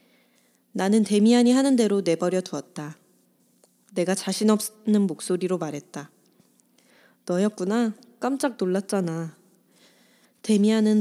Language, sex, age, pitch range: Korean, female, 20-39, 175-220 Hz